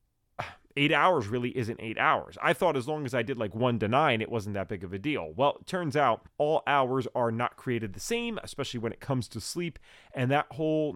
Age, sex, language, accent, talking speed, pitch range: 30-49, male, English, American, 240 wpm, 110-145 Hz